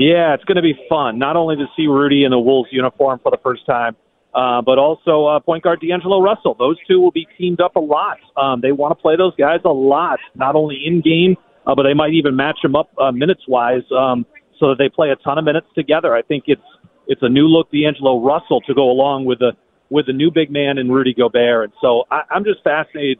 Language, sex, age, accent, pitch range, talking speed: English, male, 40-59, American, 130-170 Hz, 250 wpm